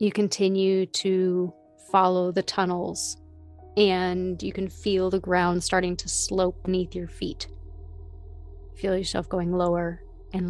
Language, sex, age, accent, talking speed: English, female, 30-49, American, 130 wpm